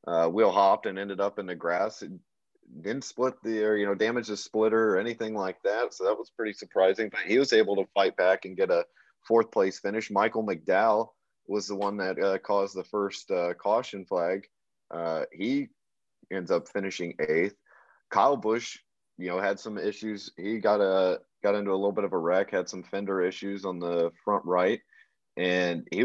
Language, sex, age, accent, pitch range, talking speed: English, male, 30-49, American, 90-115 Hz, 205 wpm